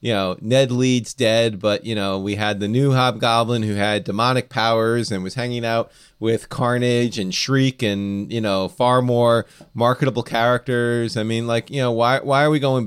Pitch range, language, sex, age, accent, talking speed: 105-135 Hz, English, male, 30-49, American, 195 wpm